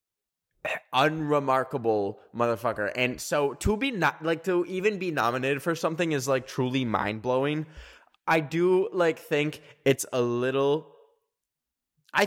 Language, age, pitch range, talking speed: English, 10-29, 115-155 Hz, 130 wpm